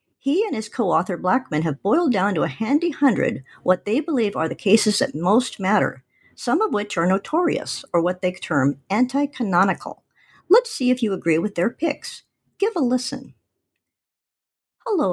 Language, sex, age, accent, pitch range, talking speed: English, male, 50-69, American, 175-260 Hz, 170 wpm